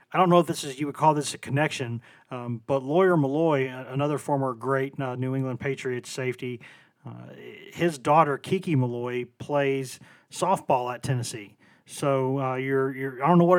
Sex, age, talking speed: male, 40-59, 180 wpm